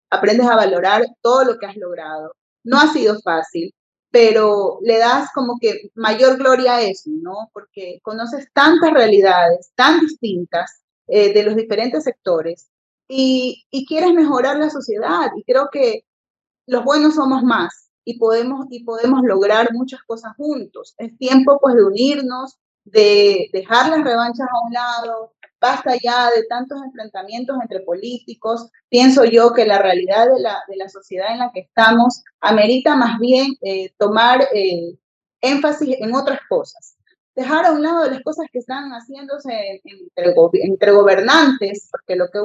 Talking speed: 160 wpm